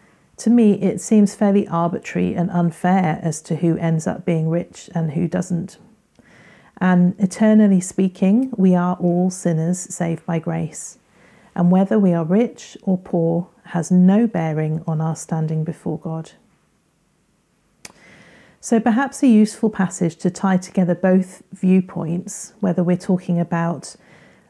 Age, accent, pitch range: 40-59, British, 170-200 Hz